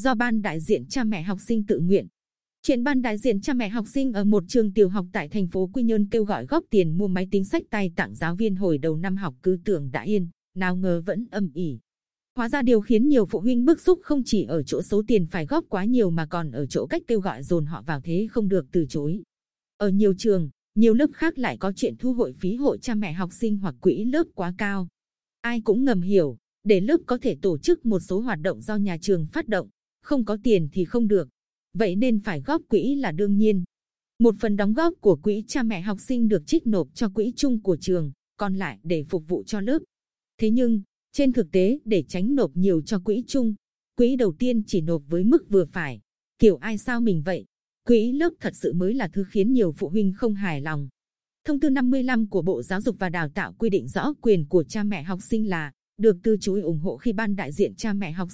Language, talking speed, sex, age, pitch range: Vietnamese, 245 wpm, female, 20-39, 185-235 Hz